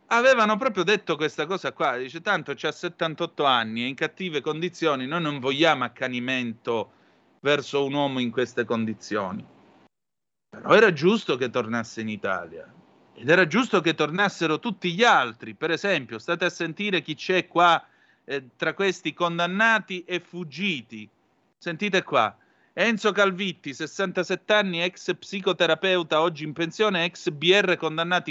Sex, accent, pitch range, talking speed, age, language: male, native, 150-185 Hz, 145 wpm, 30-49, Italian